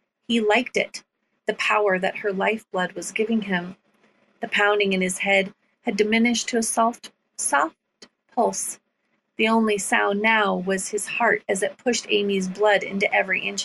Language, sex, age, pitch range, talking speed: English, female, 30-49, 195-235 Hz, 165 wpm